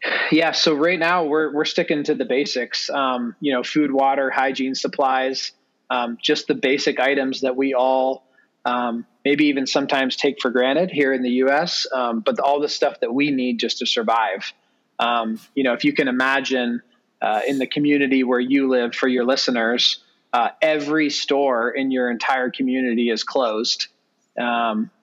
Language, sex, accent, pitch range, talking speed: English, male, American, 130-145 Hz, 180 wpm